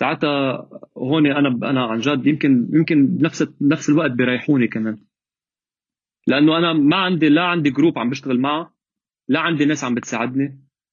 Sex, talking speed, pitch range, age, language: male, 155 wpm, 140-195 Hz, 30-49, Arabic